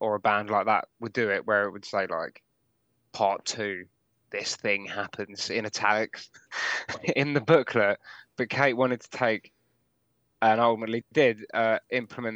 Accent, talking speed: British, 160 wpm